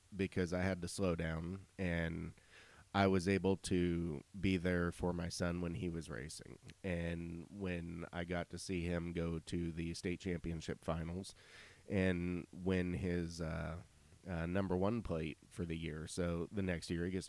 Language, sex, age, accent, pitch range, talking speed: English, male, 30-49, American, 85-95 Hz, 175 wpm